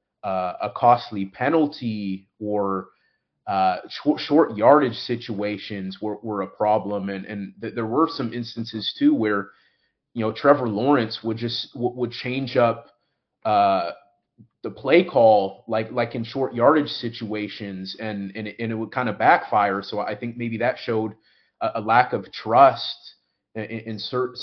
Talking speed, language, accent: 150 wpm, English, American